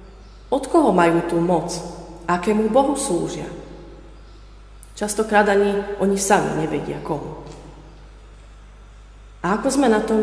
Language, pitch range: Slovak, 170-215 Hz